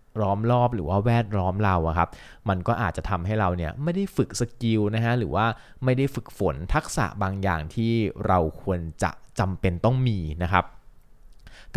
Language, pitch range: Thai, 95-120 Hz